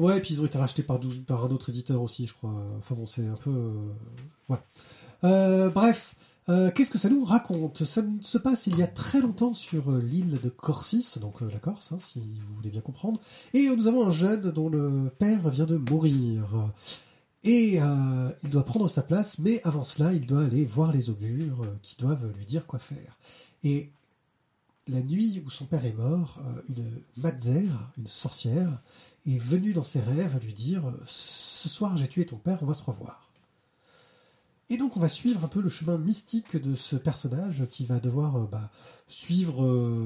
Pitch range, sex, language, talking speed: 125-170 Hz, male, French, 200 wpm